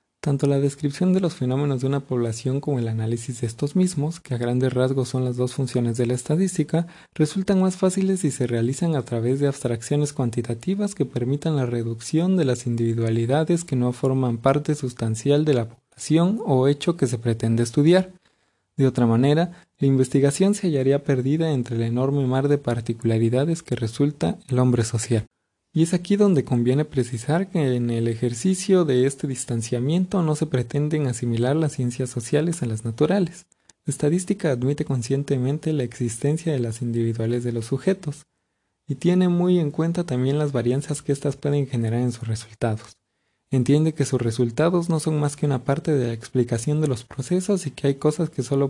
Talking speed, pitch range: 185 wpm, 120-155 Hz